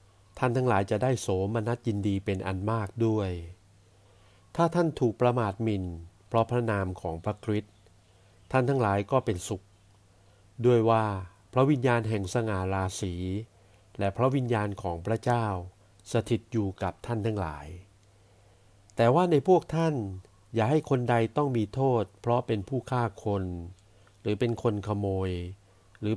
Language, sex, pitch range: Thai, male, 100-120 Hz